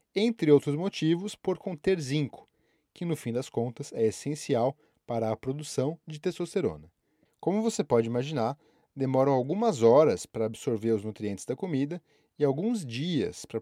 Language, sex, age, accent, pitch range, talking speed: Portuguese, male, 20-39, Brazilian, 120-170 Hz, 155 wpm